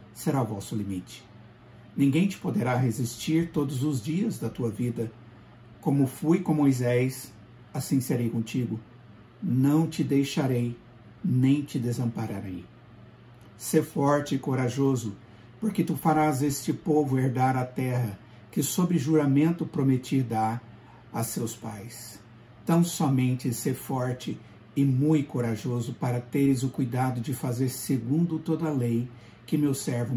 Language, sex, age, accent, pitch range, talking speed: Portuguese, male, 60-79, Brazilian, 115-145 Hz, 130 wpm